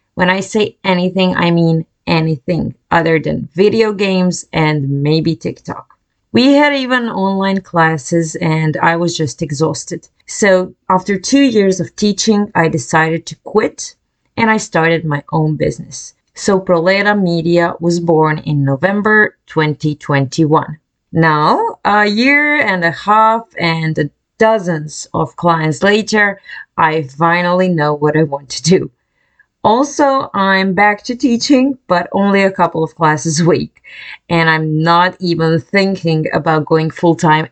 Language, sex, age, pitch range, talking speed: English, female, 30-49, 160-205 Hz, 140 wpm